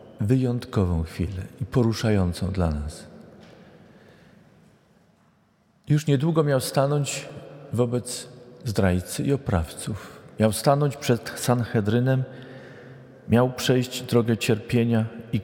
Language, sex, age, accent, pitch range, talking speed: Polish, male, 40-59, native, 110-145 Hz, 90 wpm